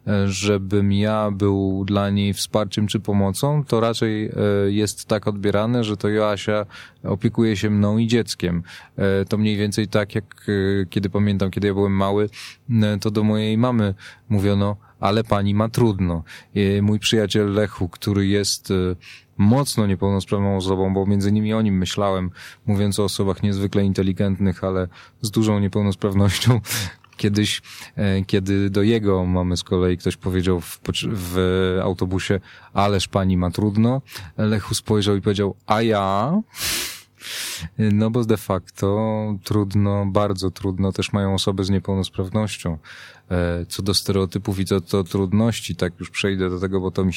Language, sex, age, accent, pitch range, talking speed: Polish, male, 20-39, native, 95-105 Hz, 140 wpm